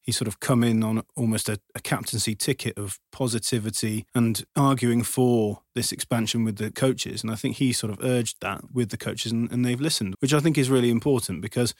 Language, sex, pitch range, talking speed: English, male, 110-125 Hz, 220 wpm